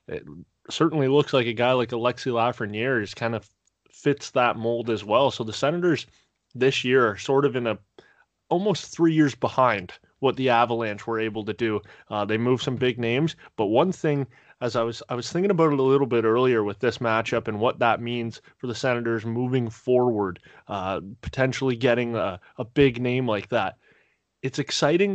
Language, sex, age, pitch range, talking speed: English, male, 20-39, 115-135 Hz, 195 wpm